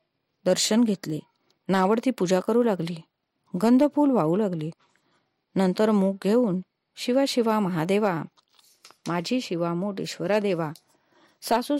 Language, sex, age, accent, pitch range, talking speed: Marathi, female, 30-49, native, 175-225 Hz, 105 wpm